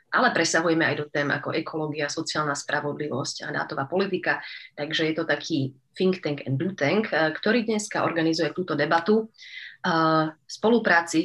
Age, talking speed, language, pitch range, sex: 30-49, 150 wpm, Slovak, 155-180 Hz, female